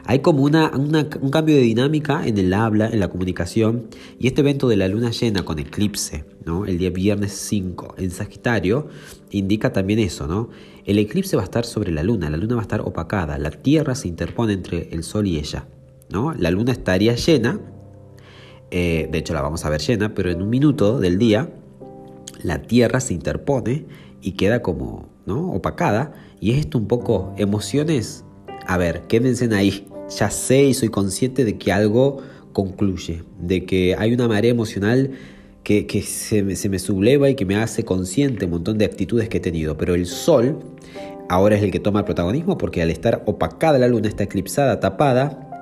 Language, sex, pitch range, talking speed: Spanish, male, 90-120 Hz, 195 wpm